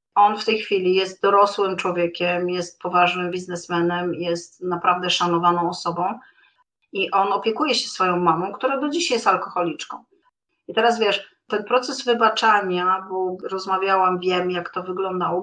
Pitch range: 175-205 Hz